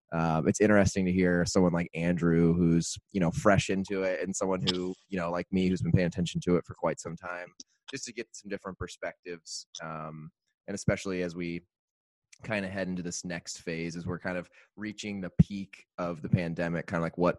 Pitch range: 85-100 Hz